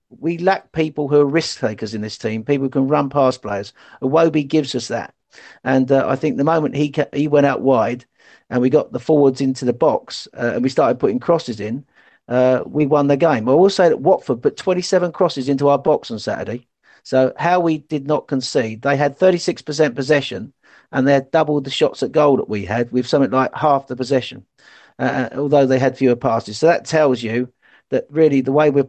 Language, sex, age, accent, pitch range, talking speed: English, male, 50-69, British, 125-150 Hz, 220 wpm